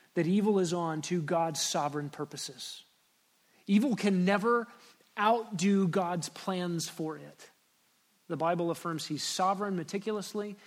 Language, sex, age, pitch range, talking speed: English, male, 30-49, 160-200 Hz, 125 wpm